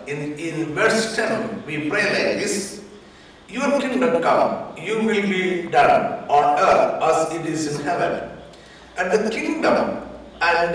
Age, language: 60-79, Malayalam